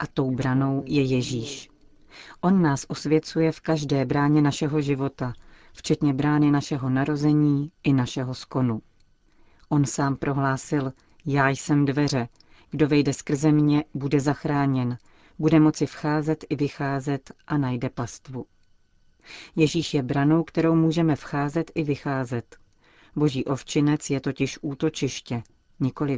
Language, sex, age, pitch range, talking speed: Czech, female, 40-59, 130-155 Hz, 125 wpm